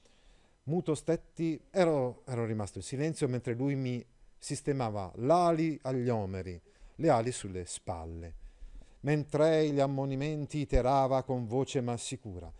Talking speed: 125 wpm